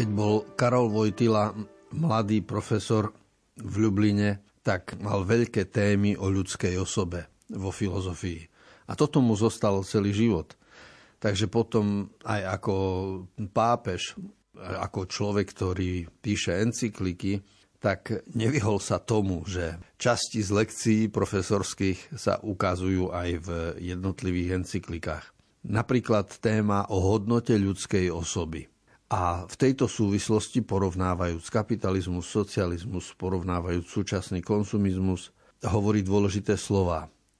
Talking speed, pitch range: 105 wpm, 95-110 Hz